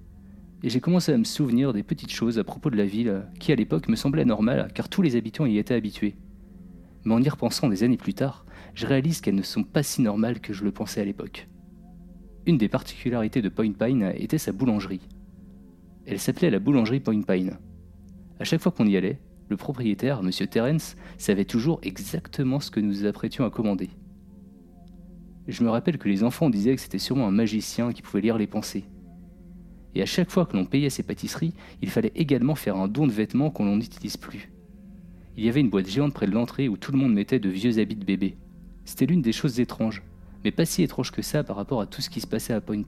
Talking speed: 225 wpm